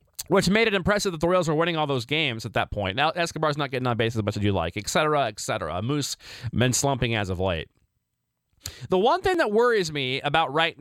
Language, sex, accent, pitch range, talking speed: English, male, American, 120-190 Hz, 245 wpm